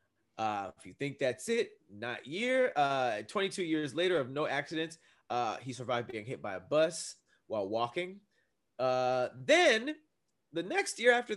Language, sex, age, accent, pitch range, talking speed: English, male, 30-49, American, 115-160 Hz, 165 wpm